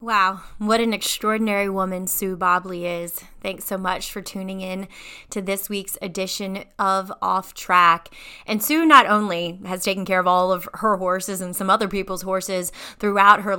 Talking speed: 175 wpm